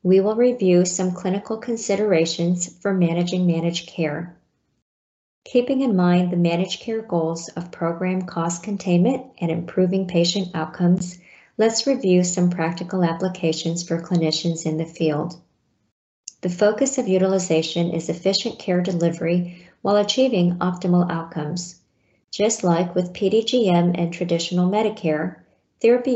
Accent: American